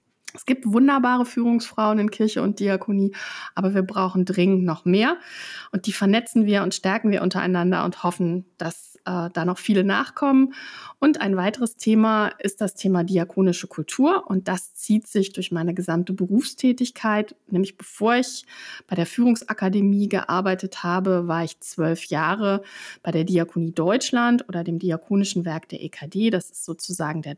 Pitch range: 175-215 Hz